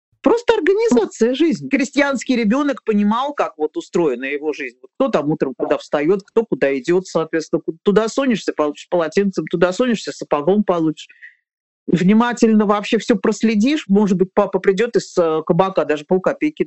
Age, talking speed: 40-59, 150 wpm